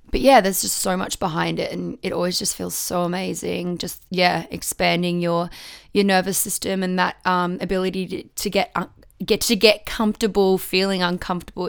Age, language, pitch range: 20-39, English, 180-205 Hz